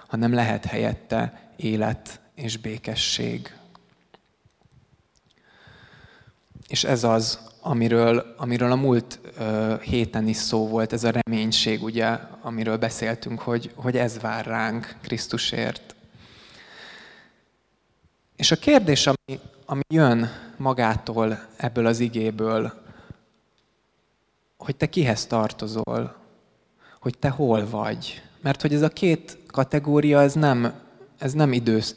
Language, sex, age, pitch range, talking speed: Hungarian, male, 20-39, 110-130 Hz, 105 wpm